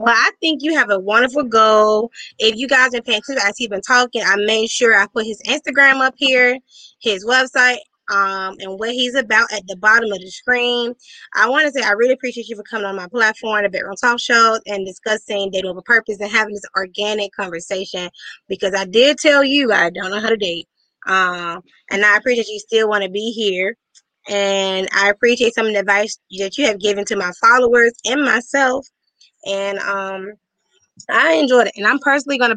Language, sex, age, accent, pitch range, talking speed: English, female, 10-29, American, 195-250 Hz, 205 wpm